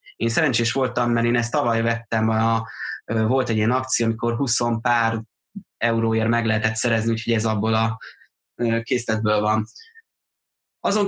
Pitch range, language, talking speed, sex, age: 110-125 Hz, Hungarian, 140 wpm, male, 20-39